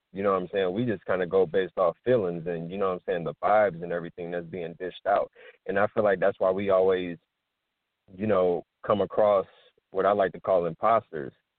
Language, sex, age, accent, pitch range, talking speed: English, male, 20-39, American, 90-105 Hz, 235 wpm